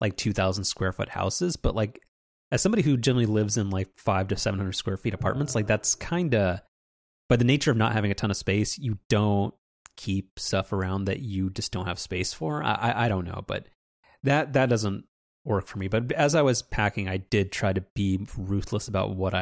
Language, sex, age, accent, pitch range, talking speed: English, male, 30-49, American, 95-120 Hz, 215 wpm